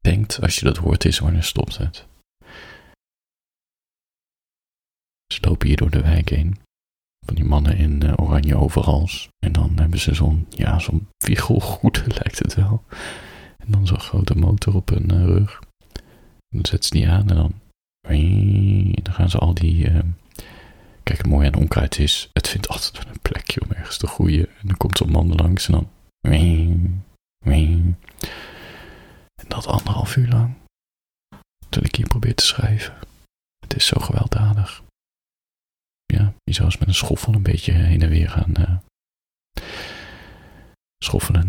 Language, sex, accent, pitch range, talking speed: Dutch, male, Dutch, 80-100 Hz, 160 wpm